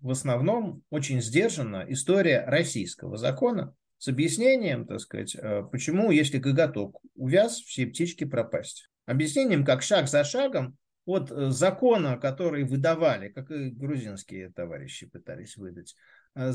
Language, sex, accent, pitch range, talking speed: Russian, male, native, 125-165 Hz, 120 wpm